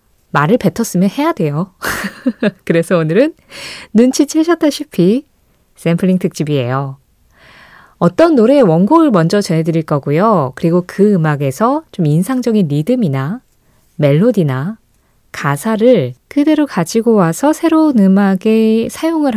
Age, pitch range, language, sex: 20-39, 160-240 Hz, Korean, female